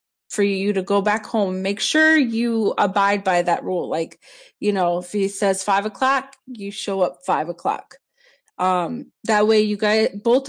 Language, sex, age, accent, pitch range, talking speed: English, female, 20-39, American, 195-235 Hz, 175 wpm